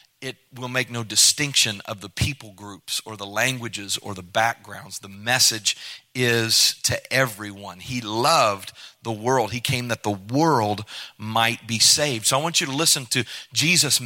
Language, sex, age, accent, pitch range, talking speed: English, male, 40-59, American, 115-145 Hz, 170 wpm